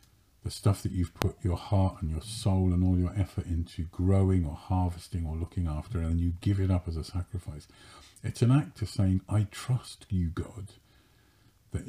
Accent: British